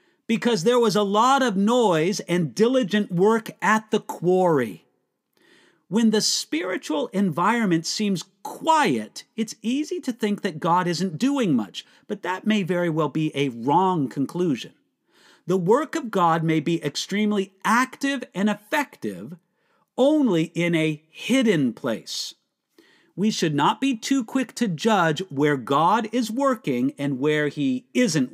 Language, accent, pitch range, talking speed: English, American, 170-245 Hz, 145 wpm